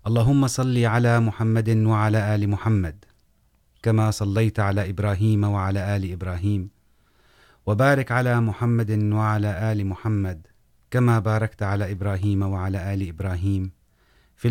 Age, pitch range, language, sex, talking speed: 30-49, 95-115 Hz, Urdu, male, 115 wpm